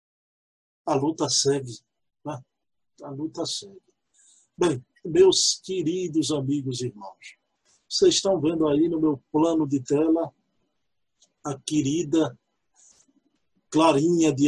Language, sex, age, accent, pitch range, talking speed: Portuguese, male, 50-69, Brazilian, 145-210 Hz, 110 wpm